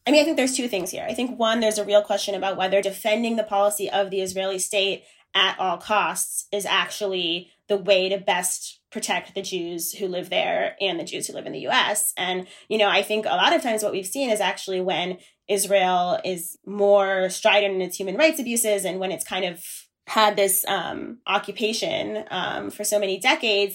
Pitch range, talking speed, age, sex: 185-215 Hz, 215 wpm, 20-39, female